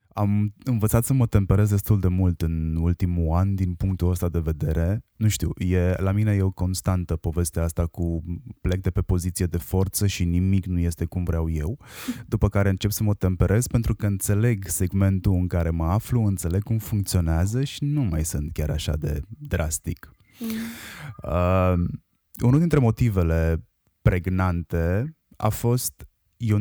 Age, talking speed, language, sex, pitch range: 20-39, 160 wpm, Romanian, male, 85-105 Hz